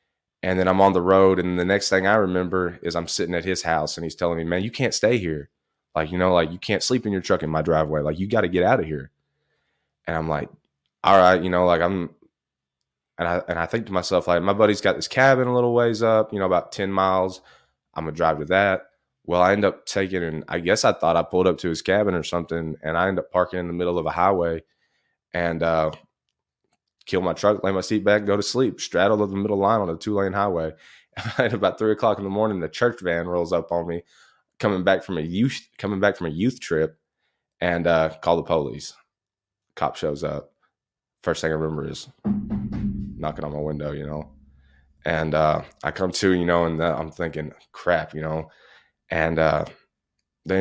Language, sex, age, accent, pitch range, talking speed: English, male, 20-39, American, 80-95 Hz, 235 wpm